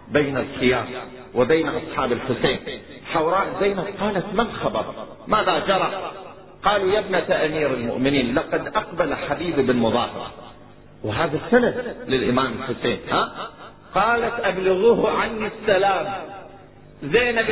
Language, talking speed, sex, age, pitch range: Arabic, 105 wpm, male, 40-59, 160-235 Hz